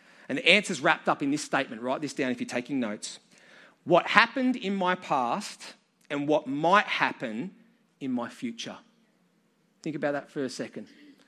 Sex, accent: male, Australian